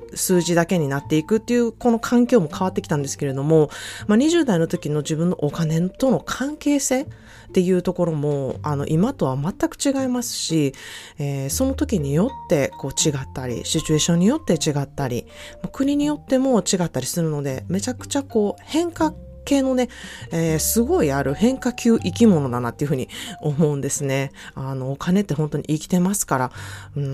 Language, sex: Japanese, female